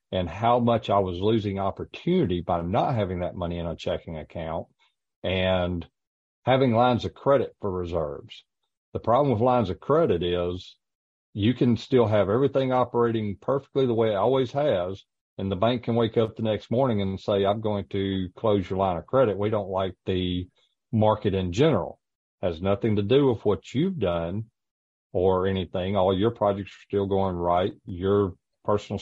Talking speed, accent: 180 wpm, American